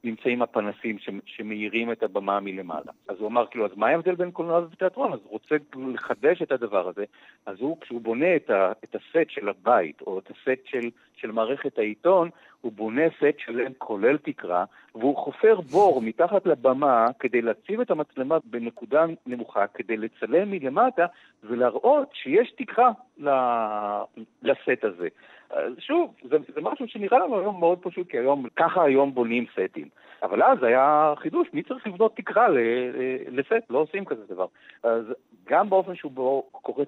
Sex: male